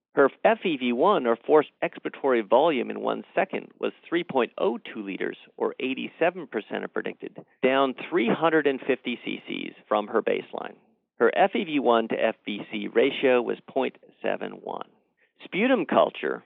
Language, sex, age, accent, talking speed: English, male, 50-69, American, 115 wpm